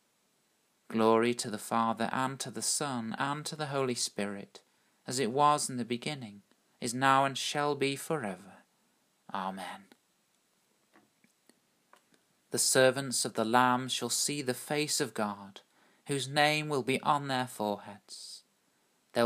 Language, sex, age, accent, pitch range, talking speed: English, male, 40-59, British, 115-135 Hz, 140 wpm